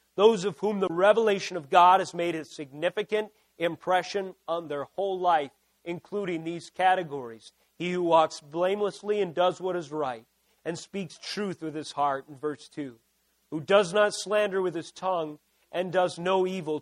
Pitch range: 165-200 Hz